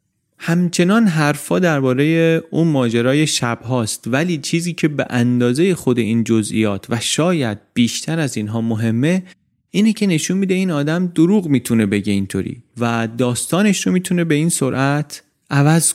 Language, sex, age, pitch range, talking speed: Persian, male, 30-49, 115-155 Hz, 145 wpm